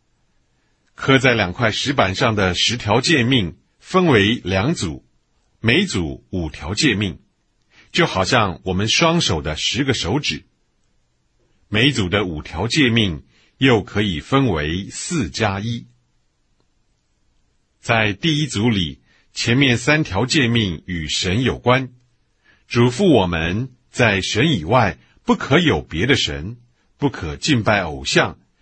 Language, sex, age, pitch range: English, male, 50-69, 90-130 Hz